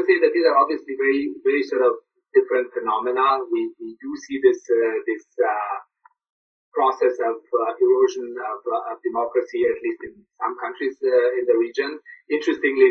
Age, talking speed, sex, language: 30-49, 175 wpm, male, English